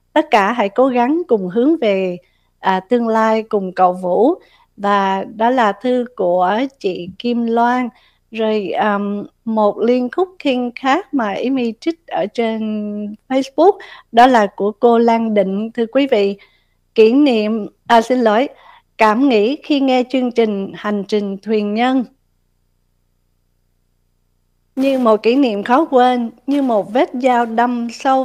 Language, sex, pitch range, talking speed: Vietnamese, female, 205-255 Hz, 145 wpm